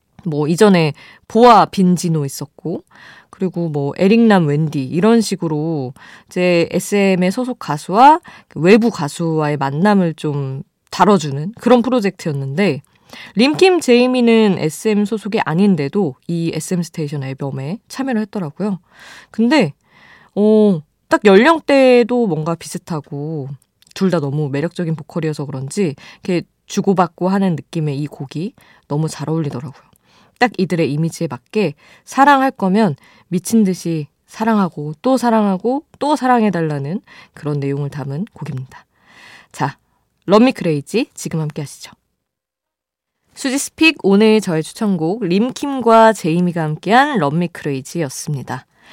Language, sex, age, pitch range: Korean, female, 20-39, 155-220 Hz